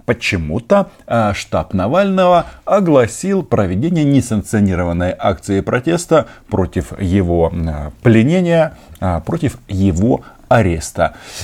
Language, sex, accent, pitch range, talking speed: Russian, male, native, 90-130 Hz, 75 wpm